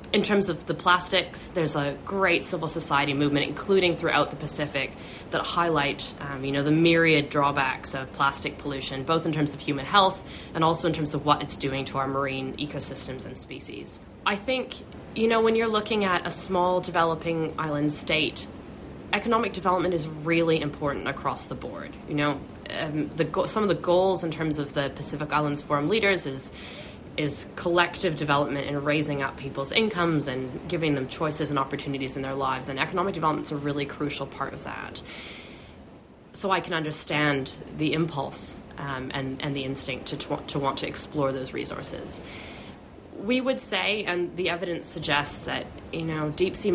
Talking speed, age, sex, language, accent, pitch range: 180 wpm, 10-29, female, English, American, 140-175 Hz